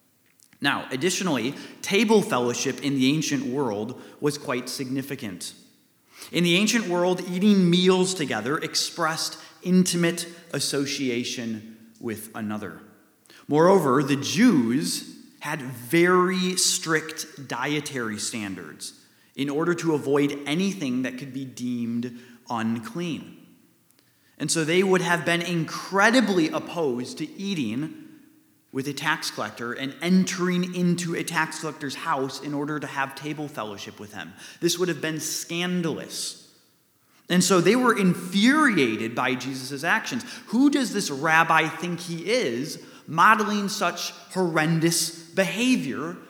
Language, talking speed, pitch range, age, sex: English, 120 wpm, 135-185 Hz, 30-49, male